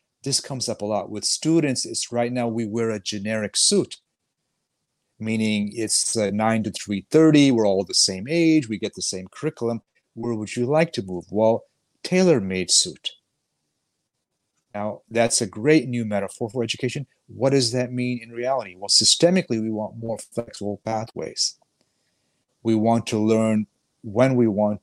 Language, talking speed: English, 160 wpm